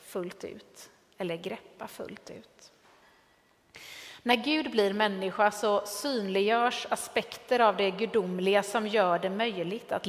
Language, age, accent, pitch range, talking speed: Swedish, 30-49, native, 195-235 Hz, 125 wpm